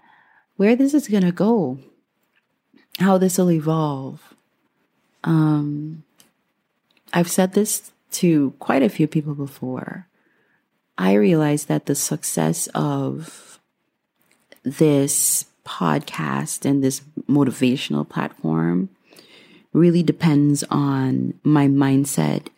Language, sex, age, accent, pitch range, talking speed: English, female, 30-49, American, 135-165 Hz, 100 wpm